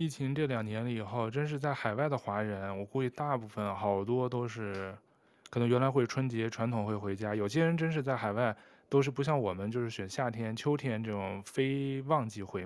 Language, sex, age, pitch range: Chinese, male, 20-39, 105-135 Hz